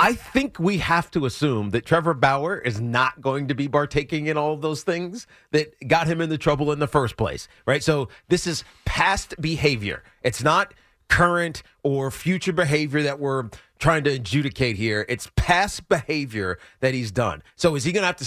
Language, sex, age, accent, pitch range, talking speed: English, male, 40-59, American, 130-175 Hz, 200 wpm